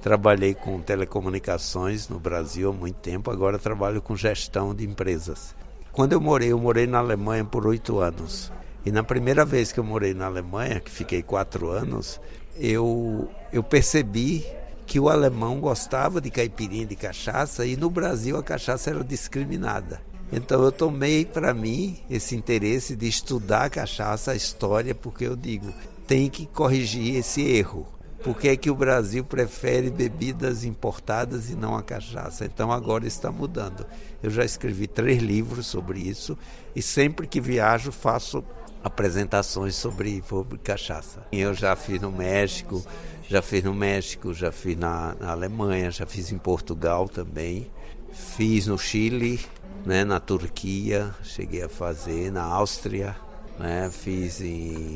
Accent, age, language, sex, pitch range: Brazilian, 60-79, Chinese, male, 95-120 Hz